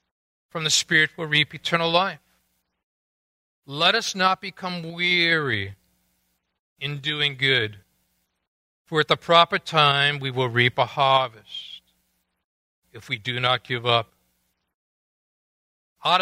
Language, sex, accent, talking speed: English, male, American, 120 wpm